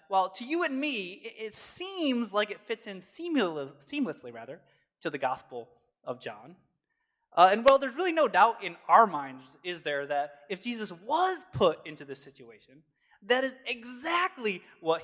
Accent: American